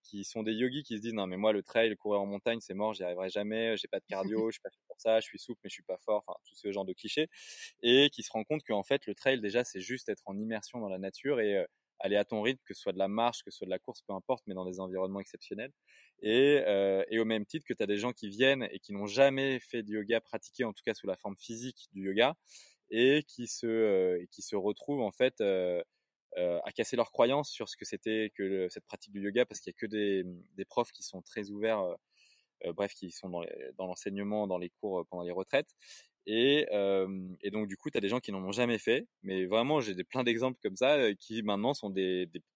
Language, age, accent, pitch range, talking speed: French, 20-39, French, 95-125 Hz, 280 wpm